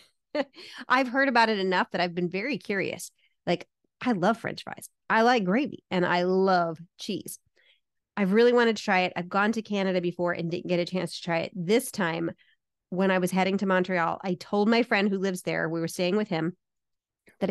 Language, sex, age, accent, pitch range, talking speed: English, female, 30-49, American, 180-215 Hz, 215 wpm